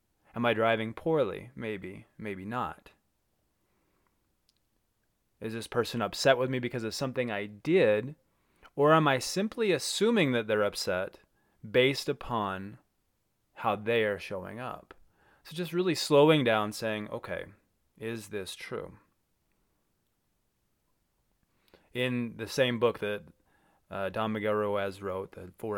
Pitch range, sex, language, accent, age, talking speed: 110-140 Hz, male, English, American, 20-39, 130 wpm